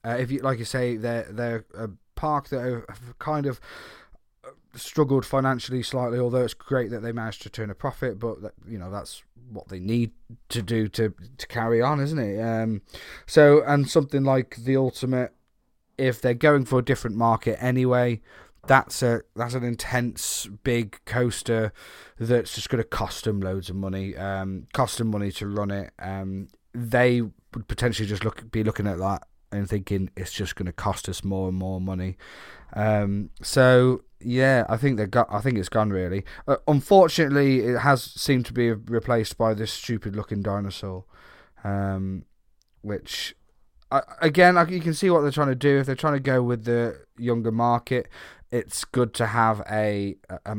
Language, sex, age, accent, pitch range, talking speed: English, male, 20-39, British, 105-125 Hz, 185 wpm